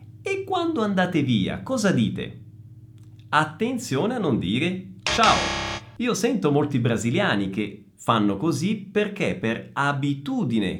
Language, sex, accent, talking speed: Italian, male, native, 115 wpm